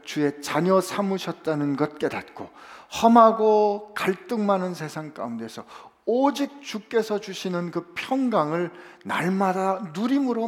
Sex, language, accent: male, Korean, native